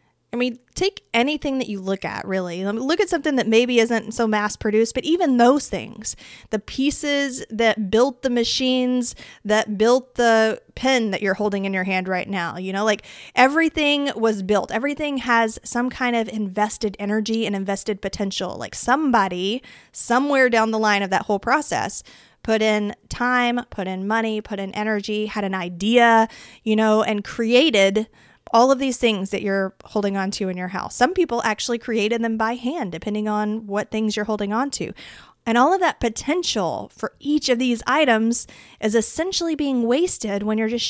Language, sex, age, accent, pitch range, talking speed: English, female, 20-39, American, 210-255 Hz, 190 wpm